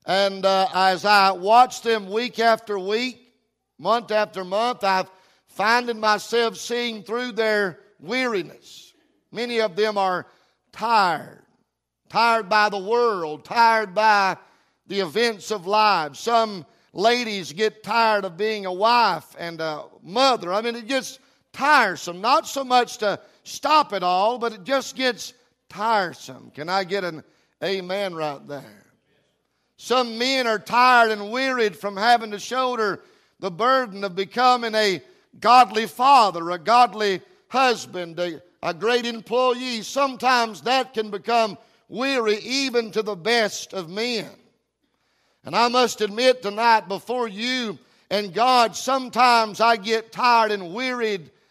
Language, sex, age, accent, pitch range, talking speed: English, male, 50-69, American, 195-240 Hz, 140 wpm